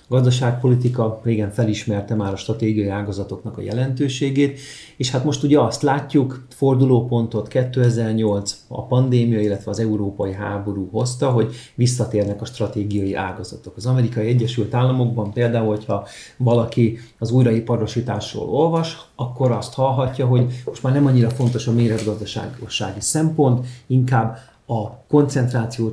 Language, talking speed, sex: Hungarian, 125 wpm, male